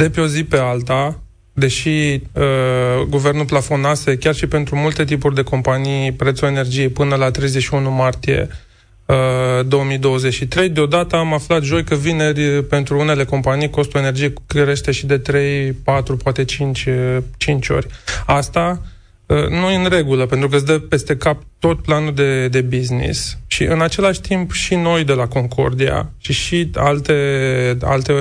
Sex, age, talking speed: male, 20-39, 155 wpm